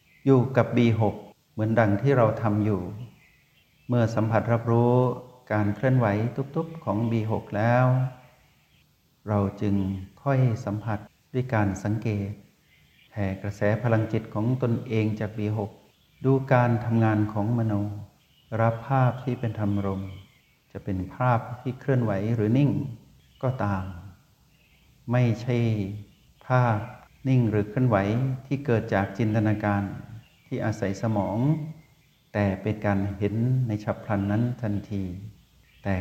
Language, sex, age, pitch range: Thai, male, 60-79, 105-125 Hz